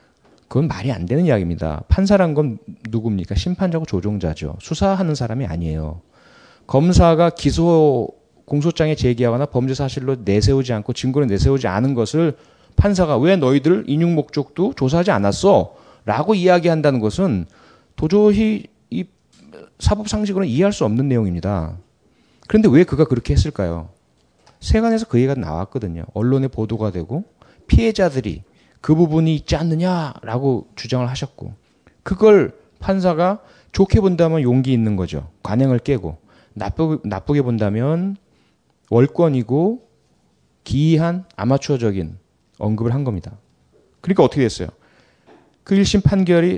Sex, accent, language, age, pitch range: male, native, Korean, 30-49, 110-170 Hz